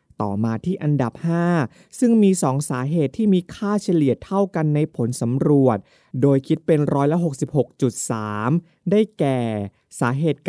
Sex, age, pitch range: male, 20-39, 125-165 Hz